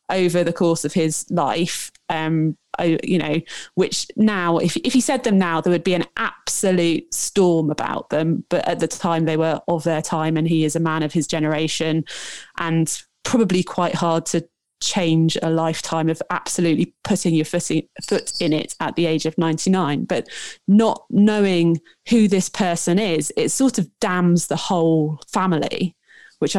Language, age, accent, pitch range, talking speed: English, 20-39, British, 165-210 Hz, 175 wpm